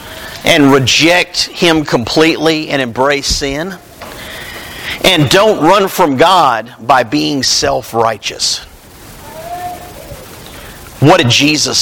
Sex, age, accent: male, 50-69, American